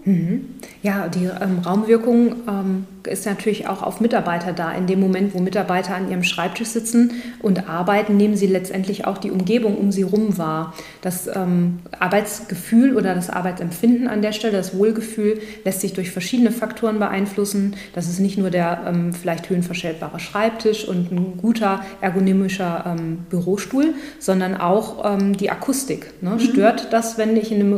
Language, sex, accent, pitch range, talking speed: German, female, German, 185-215 Hz, 160 wpm